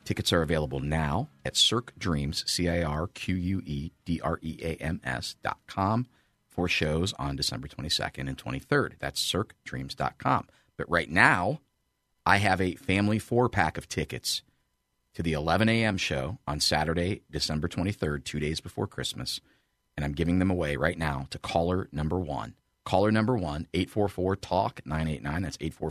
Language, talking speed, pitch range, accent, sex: English, 130 wpm, 75-95 Hz, American, male